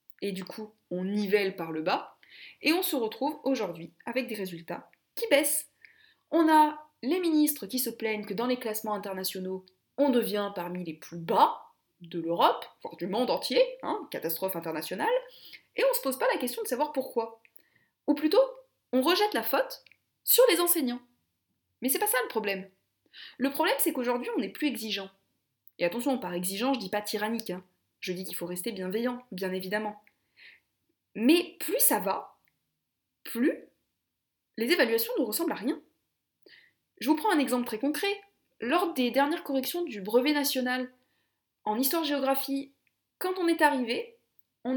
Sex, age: female, 20-39